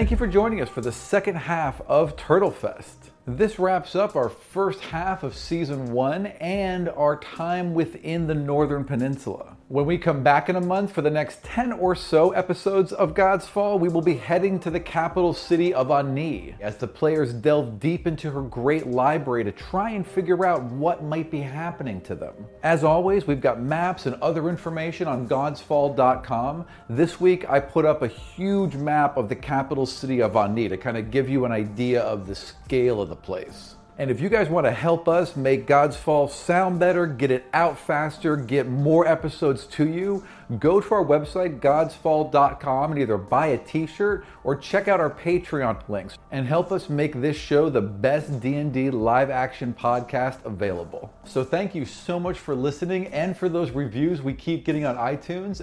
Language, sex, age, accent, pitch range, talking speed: English, male, 40-59, American, 130-175 Hz, 195 wpm